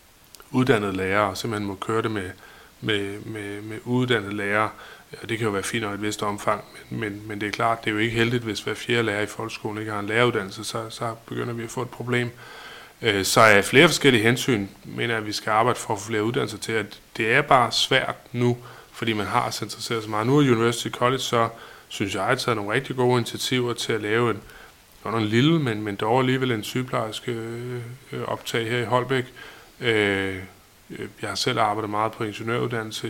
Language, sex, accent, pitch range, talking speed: Danish, male, native, 110-120 Hz, 225 wpm